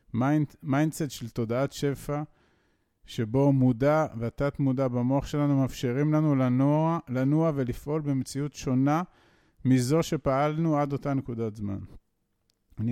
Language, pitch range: Hebrew, 120-150 Hz